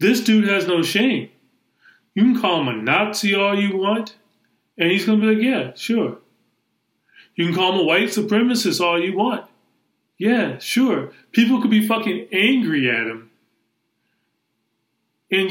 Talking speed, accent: 165 wpm, American